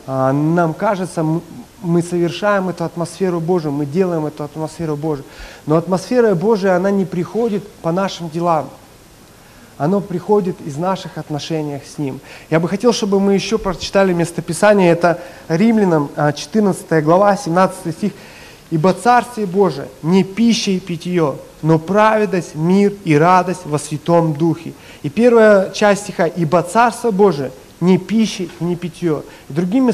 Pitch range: 165-205 Hz